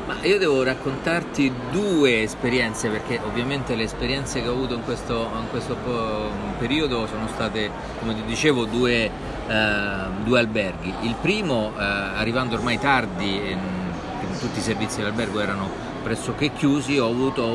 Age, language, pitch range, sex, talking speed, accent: 40-59, Italian, 110-135 Hz, male, 135 wpm, native